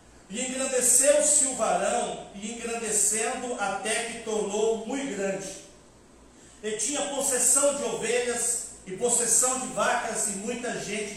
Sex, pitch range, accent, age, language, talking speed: male, 215-255 Hz, Brazilian, 50-69, Portuguese, 125 wpm